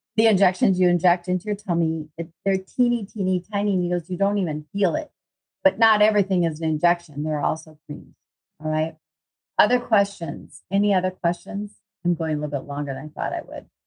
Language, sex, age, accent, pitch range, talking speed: English, female, 40-59, American, 155-195 Hz, 190 wpm